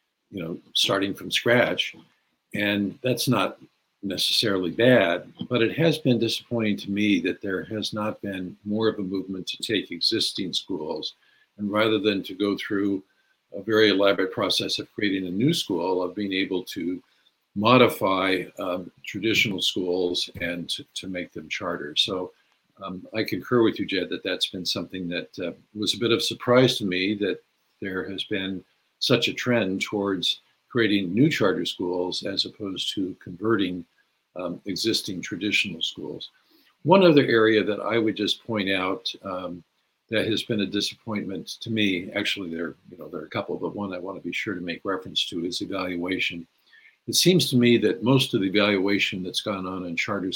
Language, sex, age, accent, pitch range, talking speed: English, male, 60-79, American, 95-115 Hz, 180 wpm